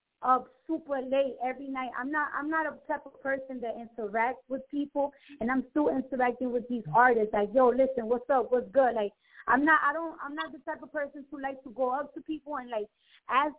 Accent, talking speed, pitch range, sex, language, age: American, 230 wpm, 250-300 Hz, female, English, 20-39